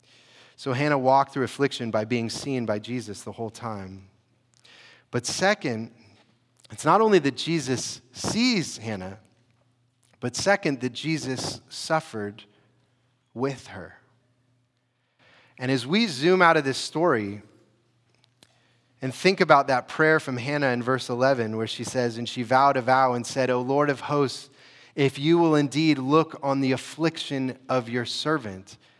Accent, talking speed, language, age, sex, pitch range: American, 150 wpm, English, 30-49, male, 120-160 Hz